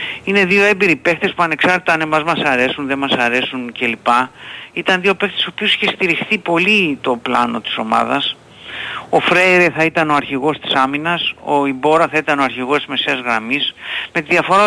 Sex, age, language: male, 50-69, Greek